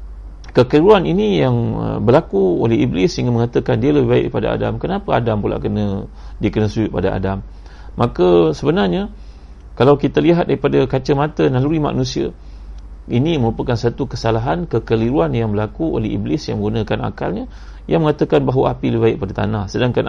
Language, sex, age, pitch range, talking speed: Malay, male, 40-59, 95-145 Hz, 150 wpm